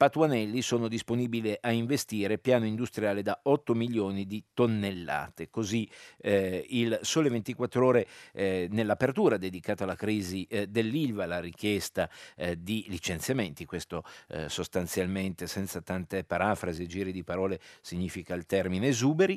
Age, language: 50-69, Italian